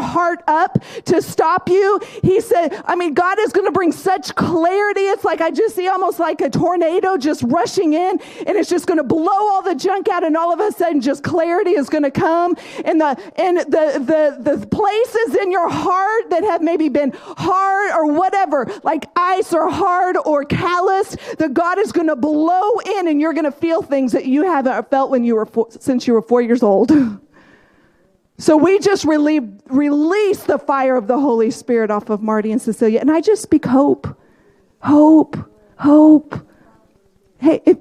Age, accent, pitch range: 40-59, American, 265-360 Hz